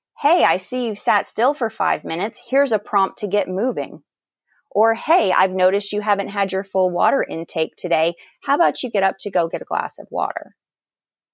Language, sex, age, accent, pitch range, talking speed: English, female, 30-49, American, 185-225 Hz, 205 wpm